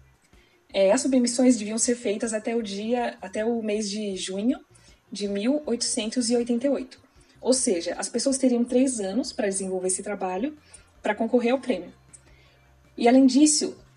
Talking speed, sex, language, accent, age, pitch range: 145 wpm, female, Portuguese, Brazilian, 20-39, 190-260 Hz